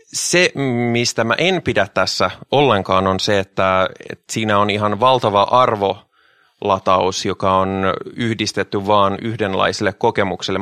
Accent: native